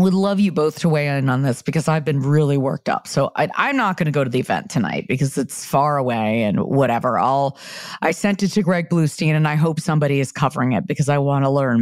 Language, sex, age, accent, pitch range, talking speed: English, female, 40-59, American, 145-200 Hz, 260 wpm